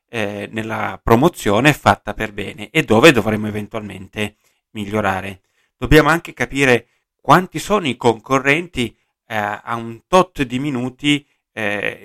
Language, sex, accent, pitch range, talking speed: Italian, male, native, 105-145 Hz, 125 wpm